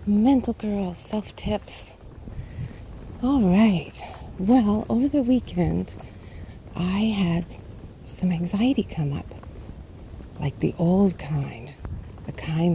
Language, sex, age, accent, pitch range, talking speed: English, female, 40-59, American, 140-200 Hz, 100 wpm